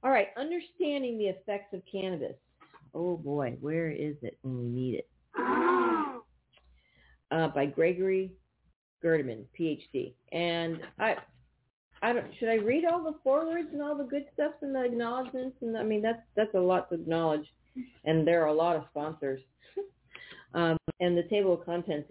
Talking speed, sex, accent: 170 wpm, female, American